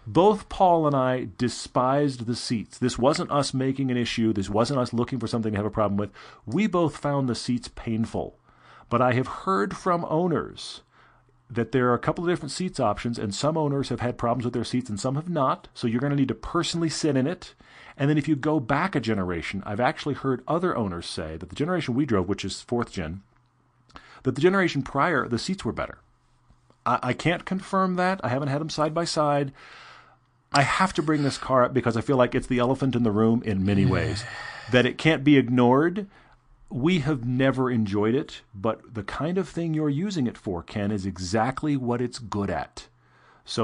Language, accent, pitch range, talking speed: English, American, 115-155 Hz, 215 wpm